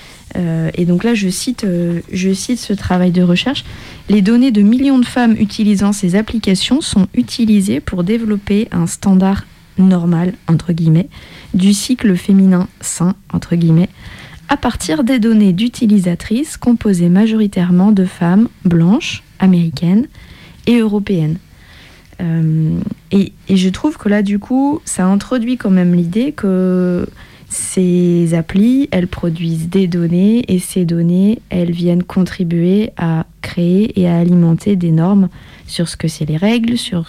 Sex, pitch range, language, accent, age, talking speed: female, 175-215 Hz, French, French, 20-39, 145 wpm